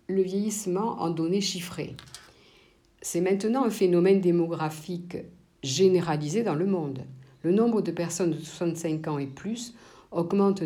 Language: French